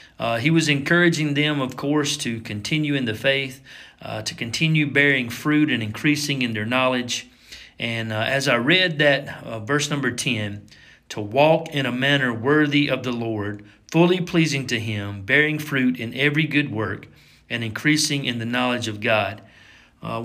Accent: American